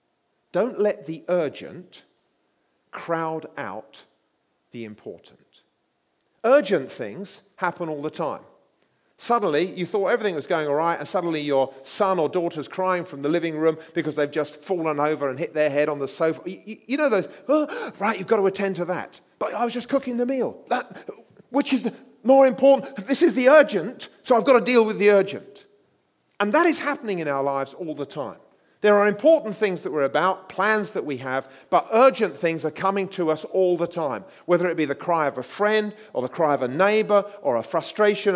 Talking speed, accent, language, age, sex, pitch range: 200 wpm, British, English, 40-59, male, 150-210 Hz